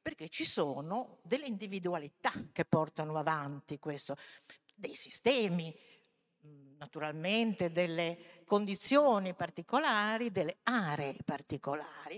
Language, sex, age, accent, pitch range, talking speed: Italian, female, 50-69, native, 155-200 Hz, 90 wpm